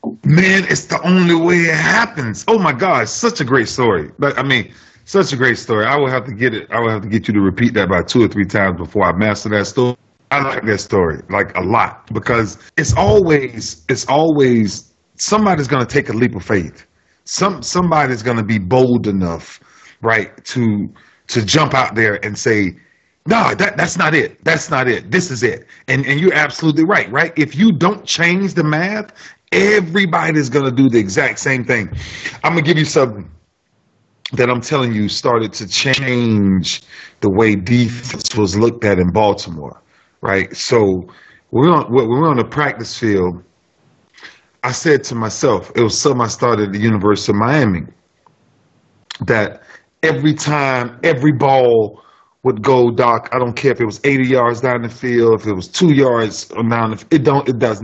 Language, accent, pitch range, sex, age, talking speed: English, American, 105-150 Hz, male, 40-59, 190 wpm